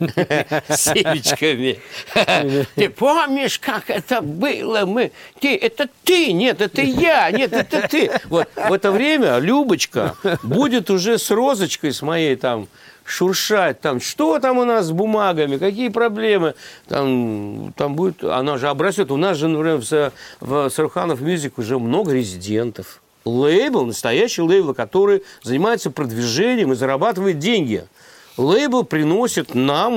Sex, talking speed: male, 130 wpm